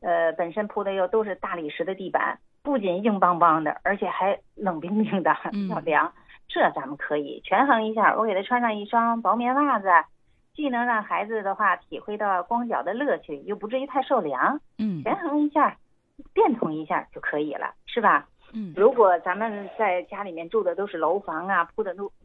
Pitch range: 175-250 Hz